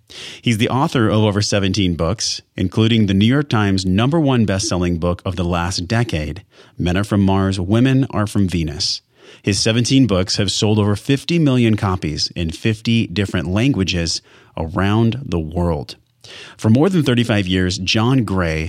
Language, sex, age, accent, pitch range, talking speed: English, male, 30-49, American, 90-115 Hz, 165 wpm